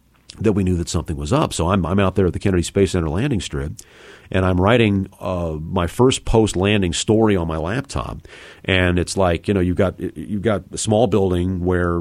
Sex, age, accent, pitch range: male, 40-59, American, 80-100 Hz